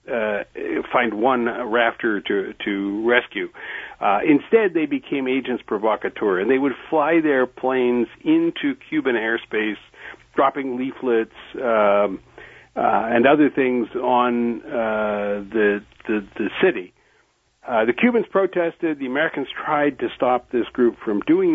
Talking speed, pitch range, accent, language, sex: 135 wpm, 105-150 Hz, American, English, male